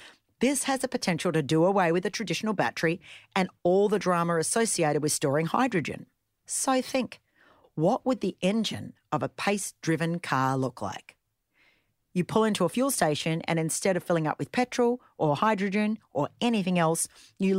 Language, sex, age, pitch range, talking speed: English, female, 40-59, 135-200 Hz, 170 wpm